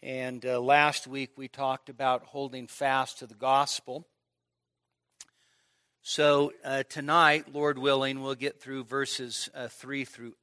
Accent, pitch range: American, 105-150 Hz